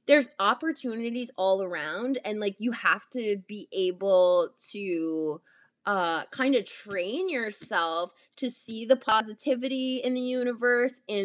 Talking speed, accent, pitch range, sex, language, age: 135 wpm, American, 185-245 Hz, female, English, 20-39